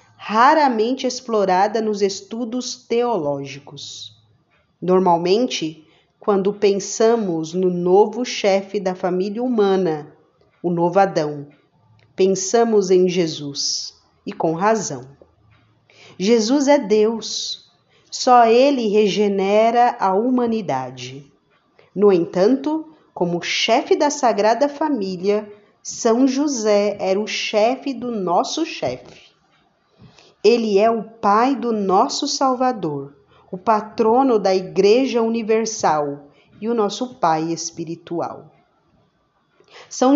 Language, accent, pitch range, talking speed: Portuguese, Brazilian, 175-230 Hz, 95 wpm